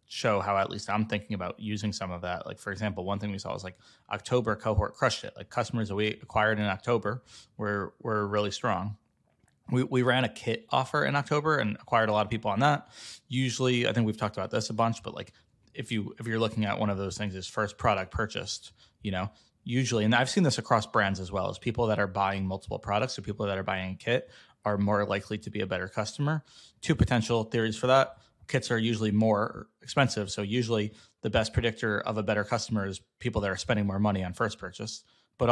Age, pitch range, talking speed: 20-39, 100-120 Hz, 240 wpm